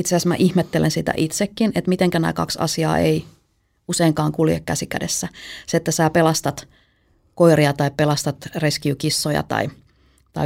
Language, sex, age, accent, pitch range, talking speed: Finnish, female, 30-49, native, 145-165 Hz, 150 wpm